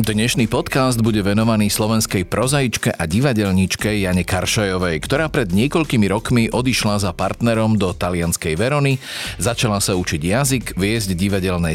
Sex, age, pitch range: male, 40-59, 90-120 Hz